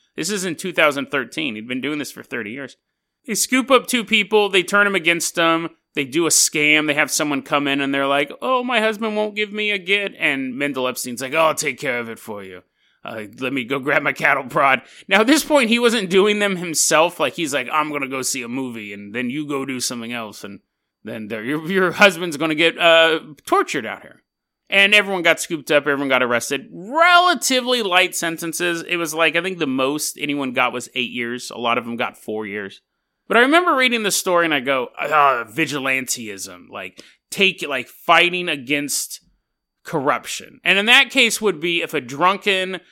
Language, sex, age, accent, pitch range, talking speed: English, male, 30-49, American, 140-200 Hz, 215 wpm